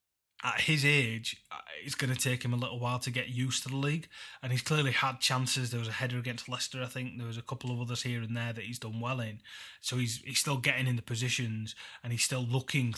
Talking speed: 260 wpm